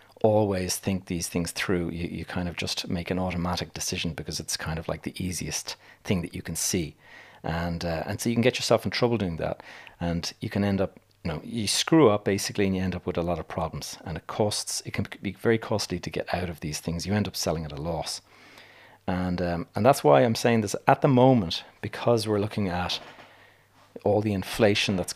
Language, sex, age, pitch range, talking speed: English, male, 30-49, 85-110 Hz, 235 wpm